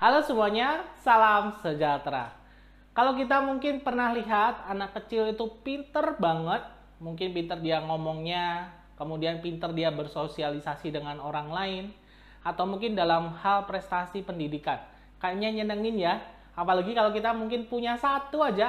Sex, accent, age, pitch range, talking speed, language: male, native, 20-39, 160-215 Hz, 130 wpm, Indonesian